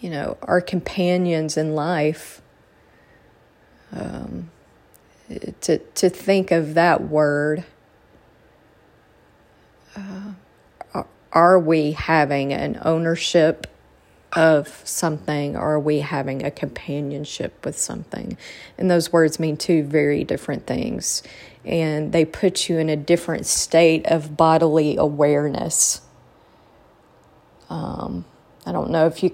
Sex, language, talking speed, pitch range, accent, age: female, English, 110 wpm, 145-170 Hz, American, 40-59